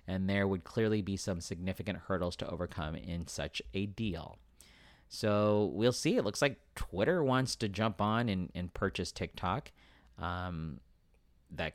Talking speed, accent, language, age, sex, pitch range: 160 wpm, American, English, 40-59, male, 85-100 Hz